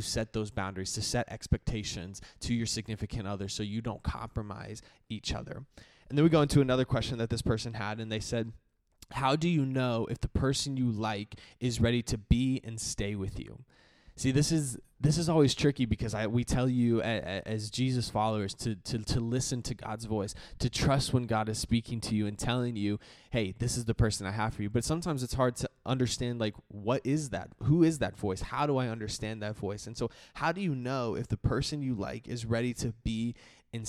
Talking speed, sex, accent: 225 wpm, male, American